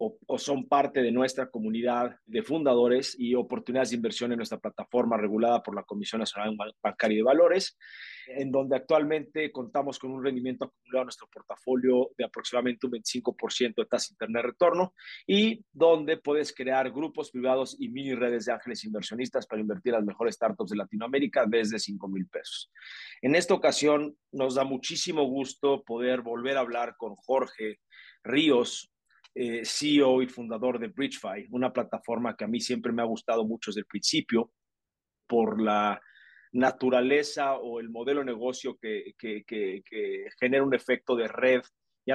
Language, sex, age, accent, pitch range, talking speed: Spanish, male, 40-59, Mexican, 120-140 Hz, 165 wpm